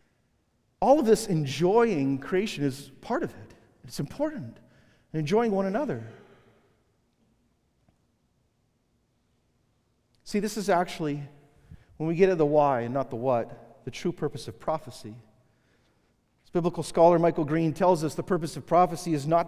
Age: 40-59